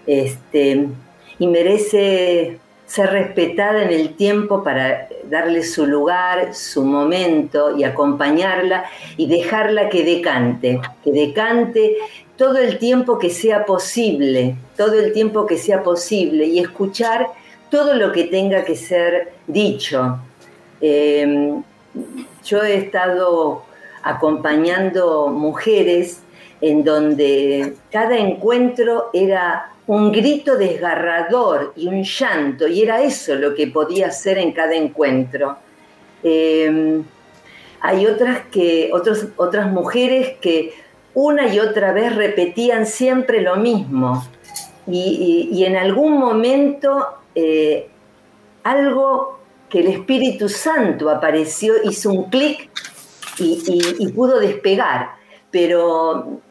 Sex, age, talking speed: female, 50-69, 115 wpm